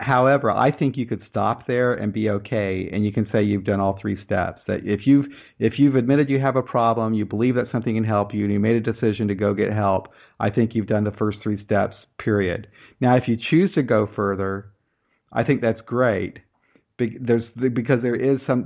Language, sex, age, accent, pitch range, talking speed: English, male, 50-69, American, 105-120 Hz, 225 wpm